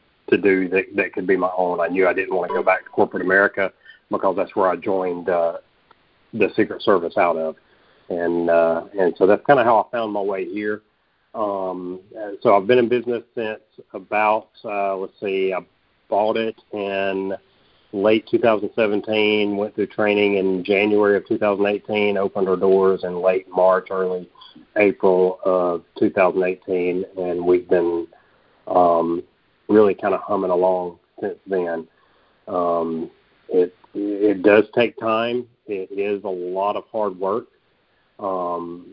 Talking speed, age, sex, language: 160 wpm, 40-59, male, English